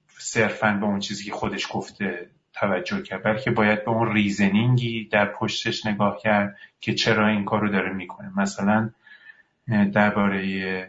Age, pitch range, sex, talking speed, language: 30-49, 100-120 Hz, male, 155 wpm, Persian